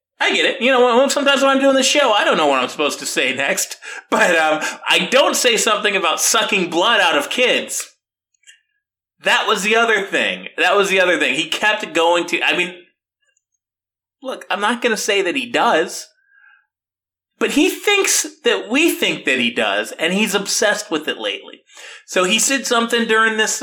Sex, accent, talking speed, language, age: male, American, 200 wpm, English, 30-49